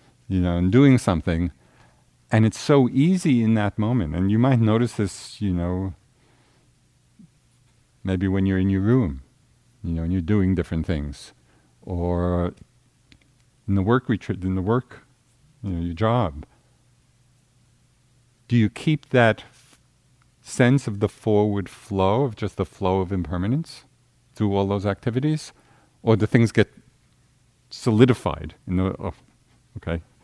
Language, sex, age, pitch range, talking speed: English, male, 50-69, 95-125 Hz, 145 wpm